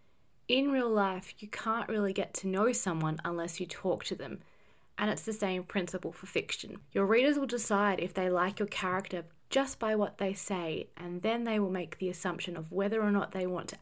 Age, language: 20-39, English